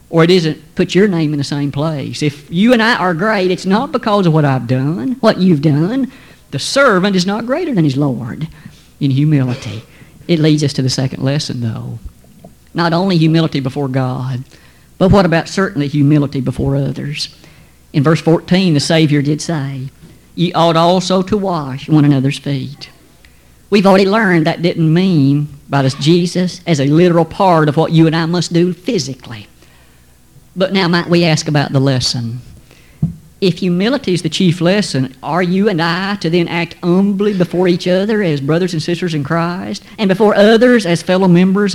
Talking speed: 185 wpm